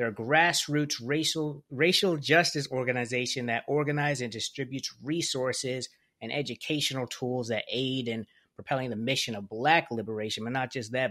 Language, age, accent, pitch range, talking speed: English, 20-39, American, 115-130 Hz, 145 wpm